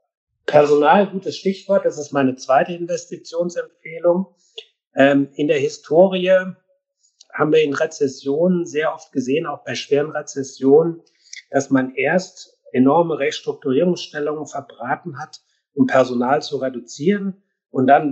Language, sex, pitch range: German, male, 135-180 Hz